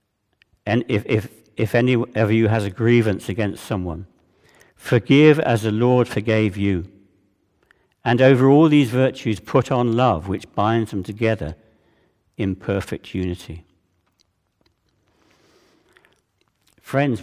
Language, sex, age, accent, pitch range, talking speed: English, male, 60-79, British, 95-125 Hz, 120 wpm